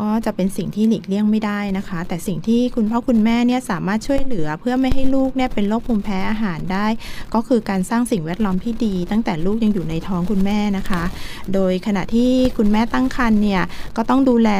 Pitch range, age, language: 190-235 Hz, 20-39, Thai